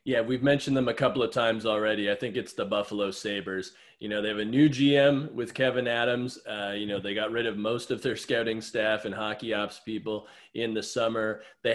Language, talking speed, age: English, 230 wpm, 20-39